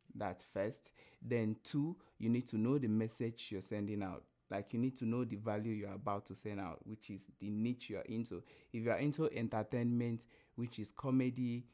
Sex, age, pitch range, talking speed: male, 30-49, 110-130 Hz, 195 wpm